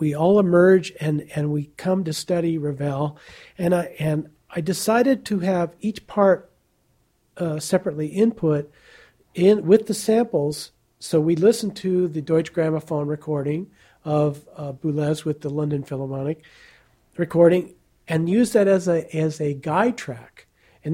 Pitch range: 155-190 Hz